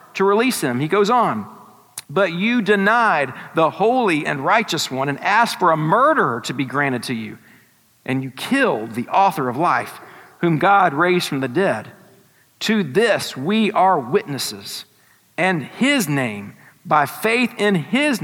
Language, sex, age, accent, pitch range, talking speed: English, male, 50-69, American, 165-250 Hz, 160 wpm